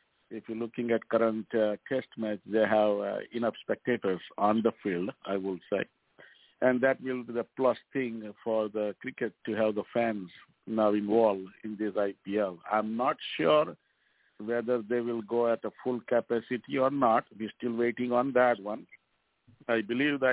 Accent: Indian